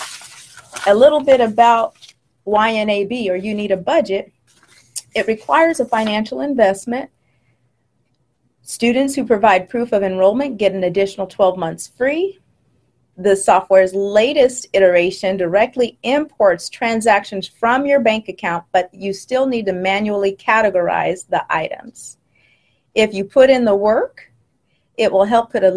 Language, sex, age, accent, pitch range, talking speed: English, female, 40-59, American, 185-235 Hz, 135 wpm